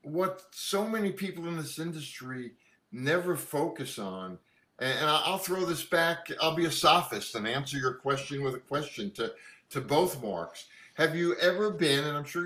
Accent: American